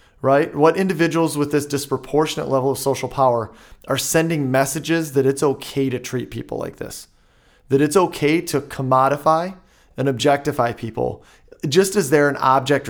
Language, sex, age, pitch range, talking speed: English, male, 30-49, 125-155 Hz, 160 wpm